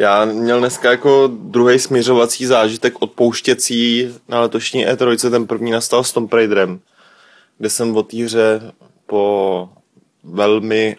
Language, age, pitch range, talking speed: Czech, 20-39, 100-110 Hz, 130 wpm